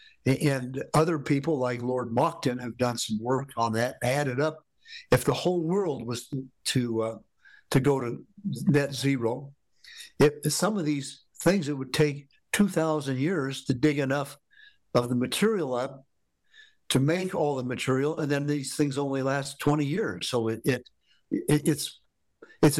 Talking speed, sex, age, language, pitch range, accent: 165 wpm, male, 60-79, English, 130-155 Hz, American